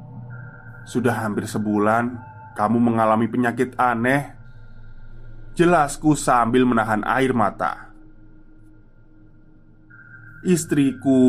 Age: 20-39